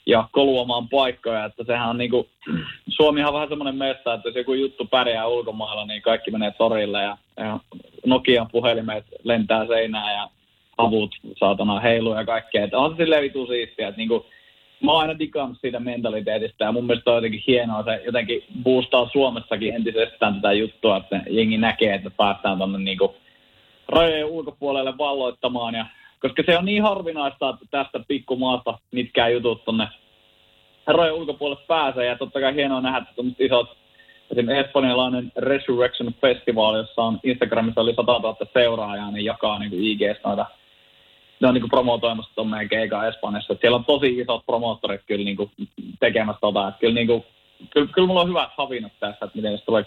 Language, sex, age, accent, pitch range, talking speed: Finnish, male, 20-39, native, 110-130 Hz, 160 wpm